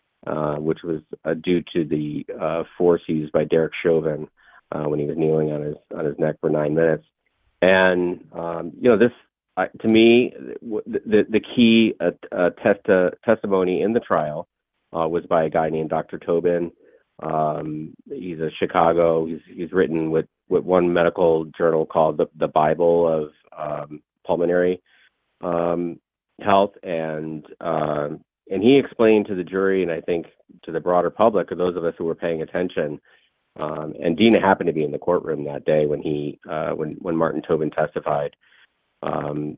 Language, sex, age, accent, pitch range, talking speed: English, male, 30-49, American, 75-90 Hz, 180 wpm